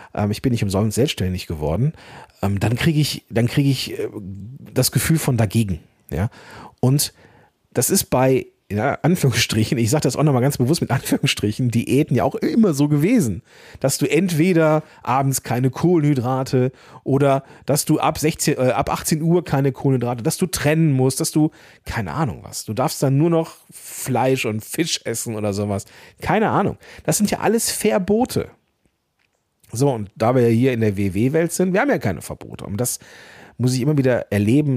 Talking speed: 175 wpm